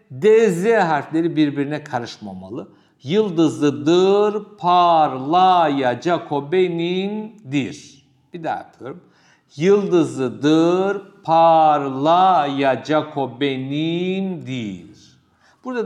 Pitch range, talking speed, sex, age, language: 140-185 Hz, 60 wpm, male, 60-79, Turkish